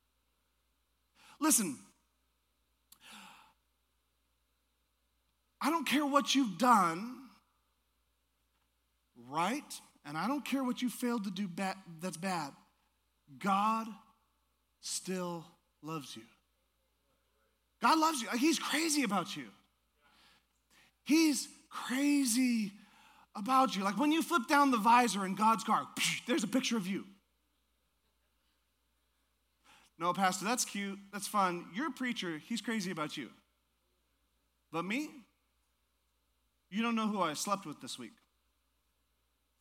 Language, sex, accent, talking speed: English, male, American, 110 wpm